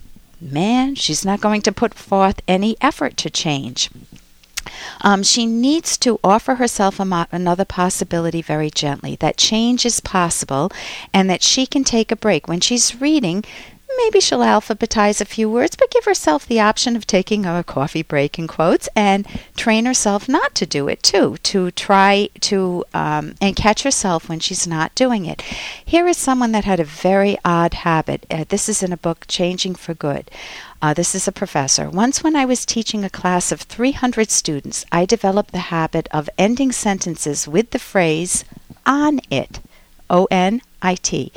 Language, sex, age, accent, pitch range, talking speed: English, female, 50-69, American, 175-230 Hz, 175 wpm